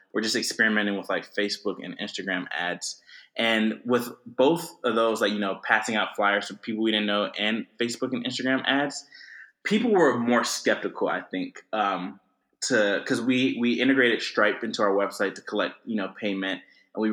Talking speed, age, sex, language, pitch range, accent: 185 wpm, 20-39, male, English, 100-130 Hz, American